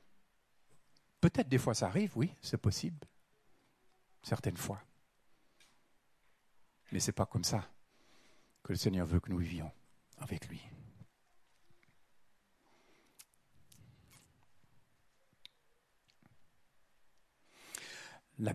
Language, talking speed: French, 85 wpm